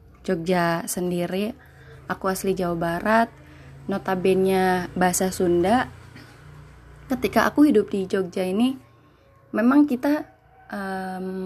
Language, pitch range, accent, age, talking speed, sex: Indonesian, 180-235 Hz, native, 20-39, 100 wpm, female